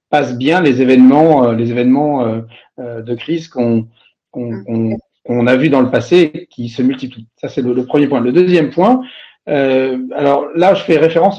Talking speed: 205 wpm